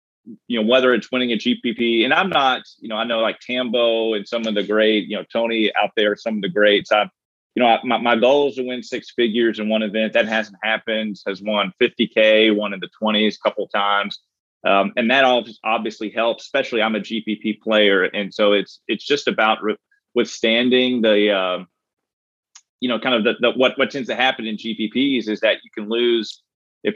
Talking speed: 225 wpm